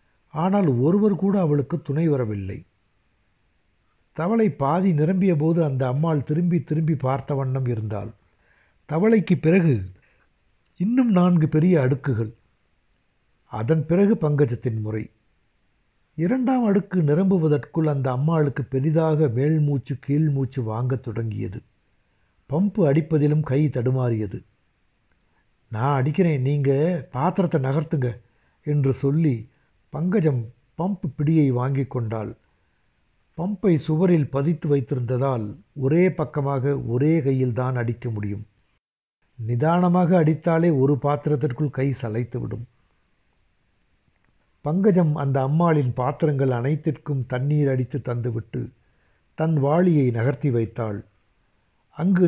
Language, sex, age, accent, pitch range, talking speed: Tamil, male, 60-79, native, 120-165 Hz, 100 wpm